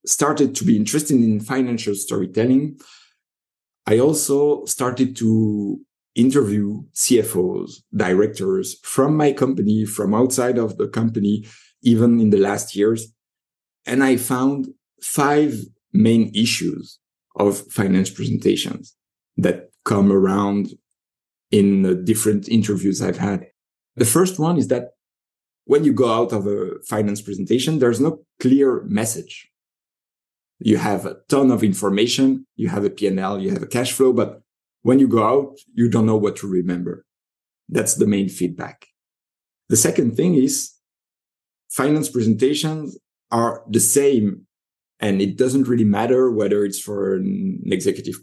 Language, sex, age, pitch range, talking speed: English, male, 50-69, 105-130 Hz, 140 wpm